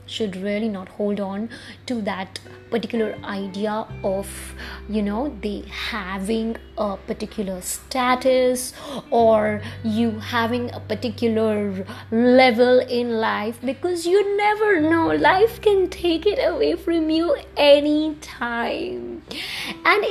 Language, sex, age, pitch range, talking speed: English, female, 20-39, 220-295 Hz, 115 wpm